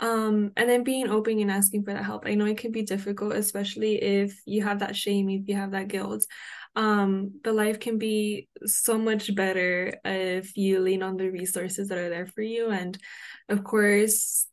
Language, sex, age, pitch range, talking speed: English, female, 10-29, 190-210 Hz, 200 wpm